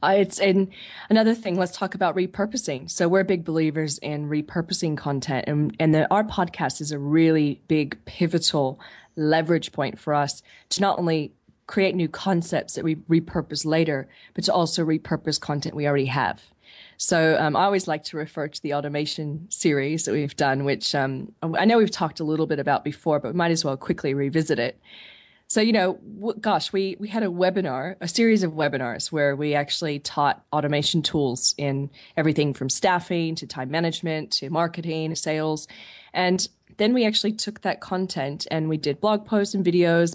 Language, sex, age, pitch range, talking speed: English, female, 20-39, 150-185 Hz, 185 wpm